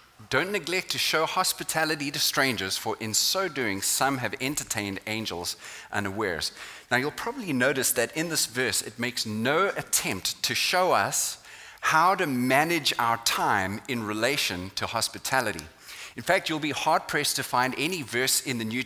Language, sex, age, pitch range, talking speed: English, male, 30-49, 105-145 Hz, 170 wpm